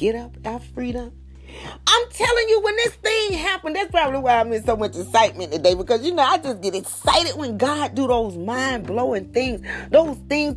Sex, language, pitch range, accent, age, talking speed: female, English, 200-290 Hz, American, 30-49, 200 wpm